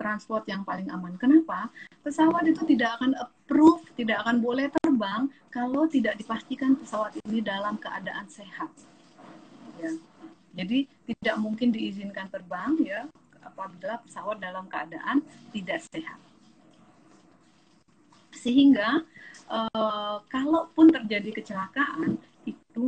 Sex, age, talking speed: female, 30-49, 110 wpm